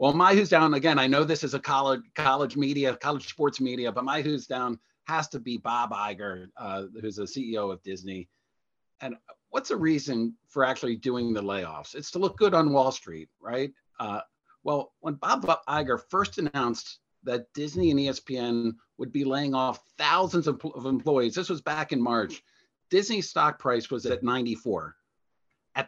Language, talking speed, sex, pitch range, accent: English, 180 wpm, male, 120-155 Hz, American